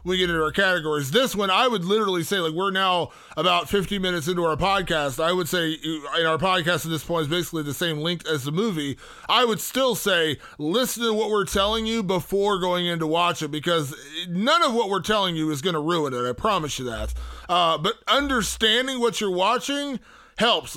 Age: 20-39